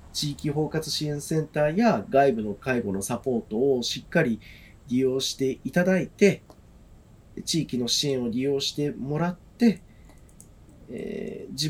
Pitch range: 130-190 Hz